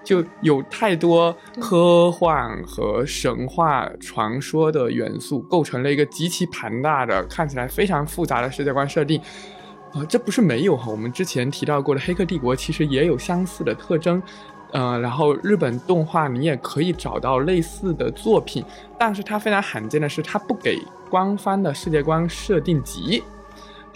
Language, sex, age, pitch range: Chinese, male, 20-39, 140-185 Hz